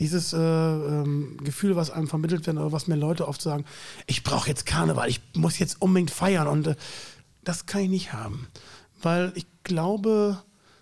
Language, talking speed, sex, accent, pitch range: German, 185 wpm, male, German, 145-185 Hz